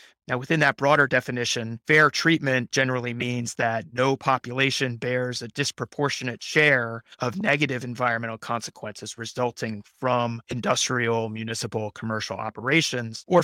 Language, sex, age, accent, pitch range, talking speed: English, male, 30-49, American, 115-130 Hz, 120 wpm